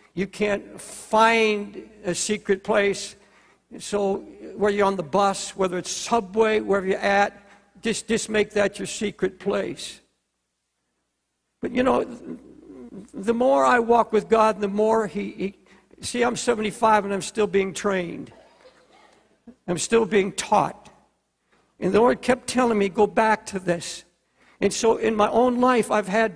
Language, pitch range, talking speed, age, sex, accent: English, 200-235 Hz, 155 wpm, 60-79, male, American